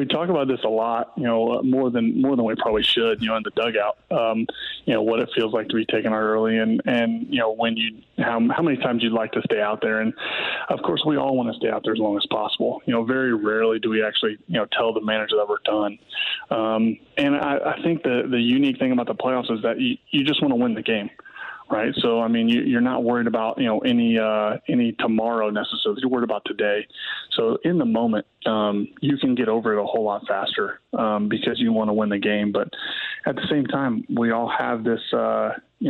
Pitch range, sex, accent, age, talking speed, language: 110-130 Hz, male, American, 20-39, 250 wpm, English